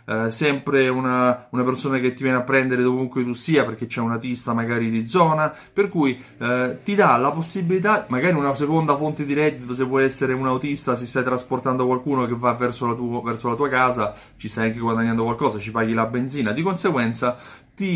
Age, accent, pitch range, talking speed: 30-49, native, 120-155 Hz, 210 wpm